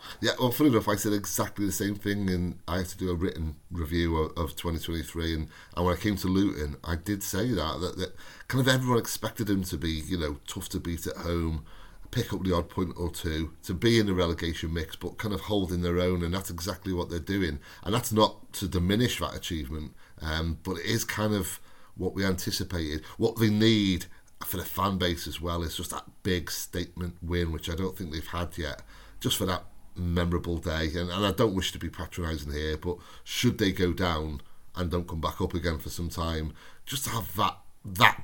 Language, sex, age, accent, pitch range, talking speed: English, male, 30-49, British, 85-100 Hz, 225 wpm